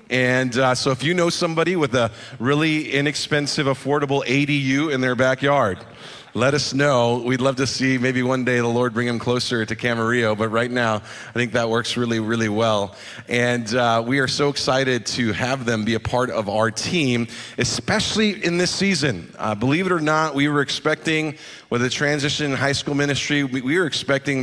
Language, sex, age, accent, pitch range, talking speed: English, male, 30-49, American, 115-140 Hz, 200 wpm